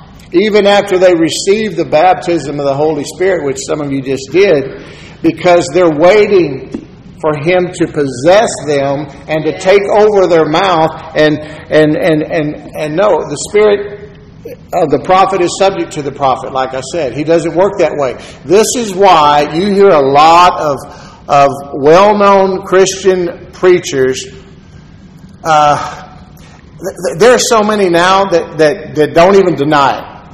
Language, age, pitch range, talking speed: English, 50-69, 150-185 Hz, 160 wpm